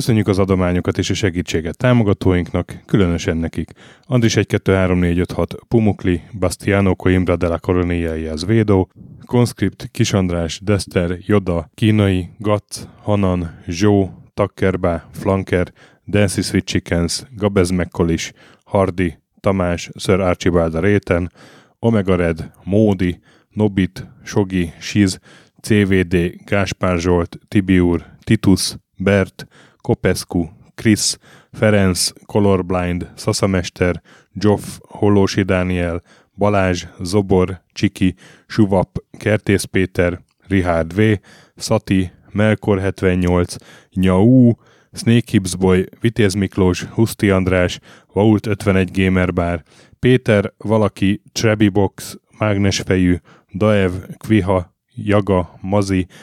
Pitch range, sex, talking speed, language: 90-105 Hz, male, 95 wpm, Hungarian